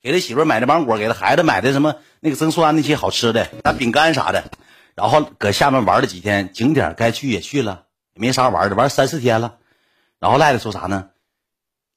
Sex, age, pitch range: male, 50-69, 110-160 Hz